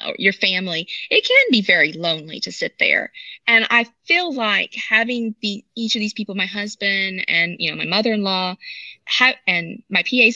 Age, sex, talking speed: 30-49, female, 175 wpm